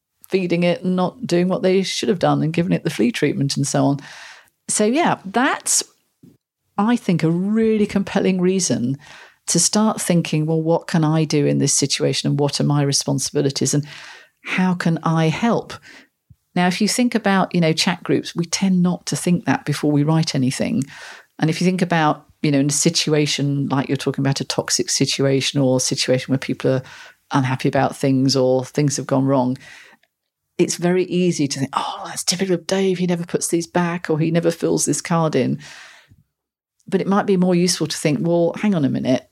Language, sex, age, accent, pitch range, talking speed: English, female, 40-59, British, 140-185 Hz, 205 wpm